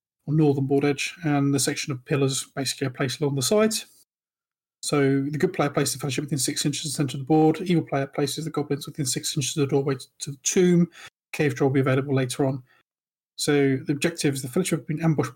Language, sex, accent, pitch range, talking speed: English, male, British, 140-160 Hz, 240 wpm